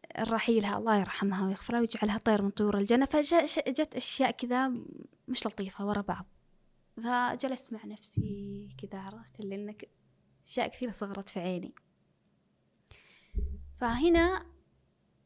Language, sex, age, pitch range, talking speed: Arabic, female, 10-29, 205-245 Hz, 115 wpm